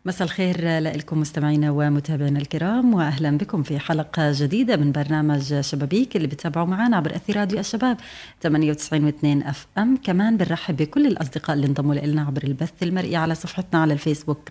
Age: 30-49